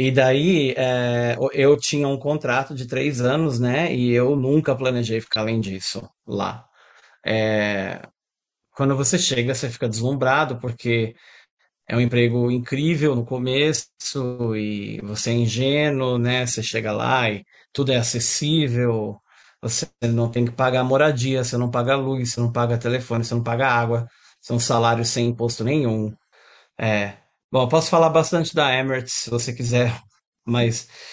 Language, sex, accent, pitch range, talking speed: Portuguese, male, Brazilian, 120-145 Hz, 160 wpm